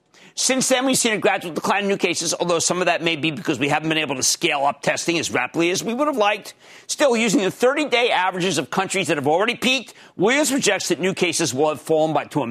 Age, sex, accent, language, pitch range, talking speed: 50-69, male, American, English, 165-260 Hz, 255 wpm